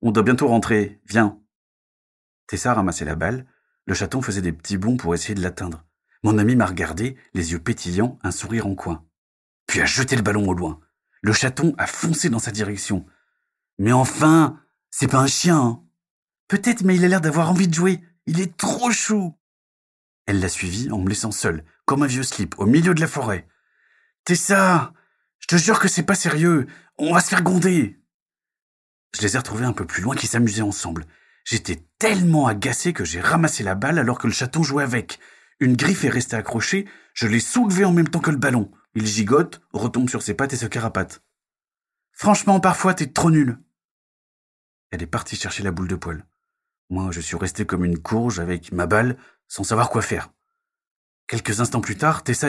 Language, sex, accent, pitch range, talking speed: French, male, French, 100-155 Hz, 205 wpm